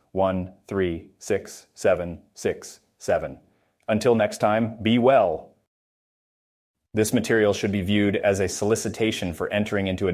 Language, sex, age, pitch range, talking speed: English, male, 30-49, 95-115 Hz, 135 wpm